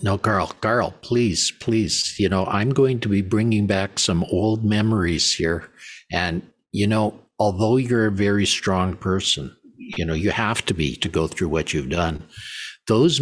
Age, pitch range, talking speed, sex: 50-69, 95-115 Hz, 175 wpm, male